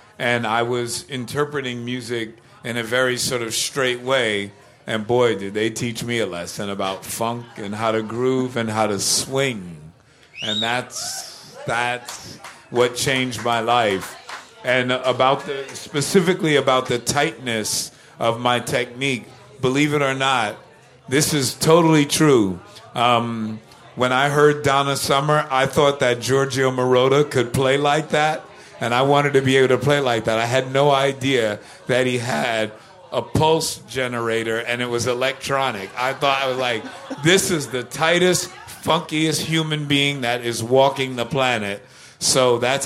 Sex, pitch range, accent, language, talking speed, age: male, 120-140 Hz, American, English, 160 wpm, 50-69